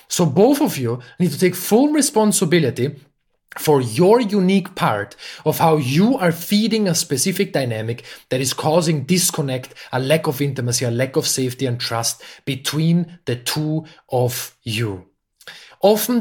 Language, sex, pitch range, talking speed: English, male, 130-165 Hz, 150 wpm